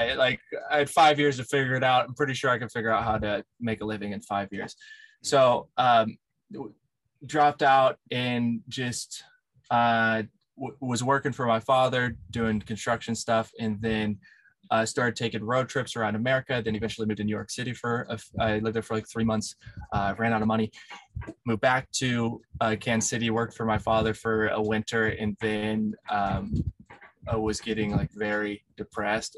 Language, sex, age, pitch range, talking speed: English, male, 20-39, 105-120 Hz, 190 wpm